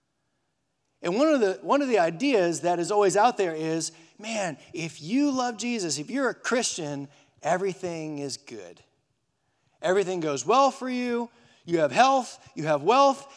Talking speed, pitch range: 165 wpm, 170-260 Hz